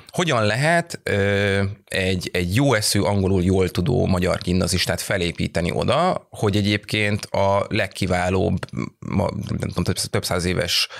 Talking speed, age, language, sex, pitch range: 120 wpm, 30-49, Hungarian, male, 90-115 Hz